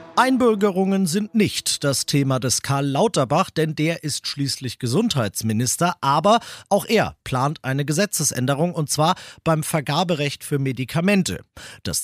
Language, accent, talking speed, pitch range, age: German, German, 130 wpm, 135-185 Hz, 40-59